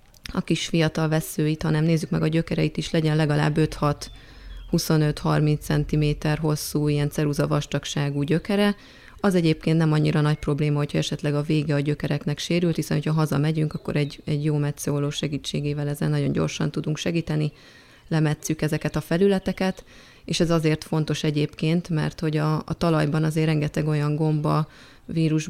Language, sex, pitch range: Hungarian, female, 150-165 Hz